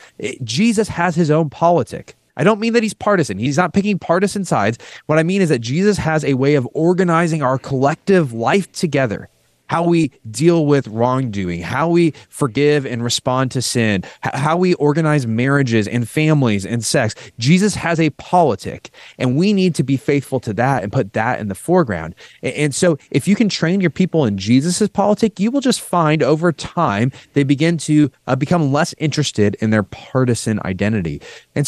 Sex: male